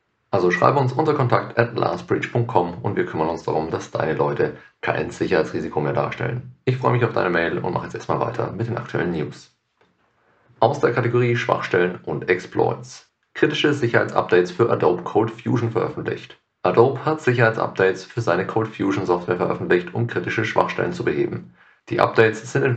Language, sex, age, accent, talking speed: German, male, 40-59, German, 170 wpm